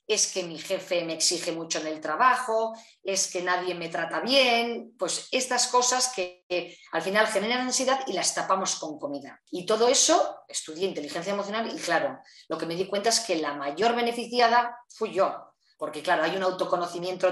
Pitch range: 170-245 Hz